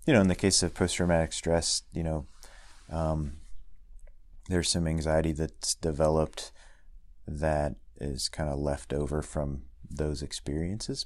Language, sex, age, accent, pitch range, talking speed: English, male, 30-49, American, 70-80 Hz, 135 wpm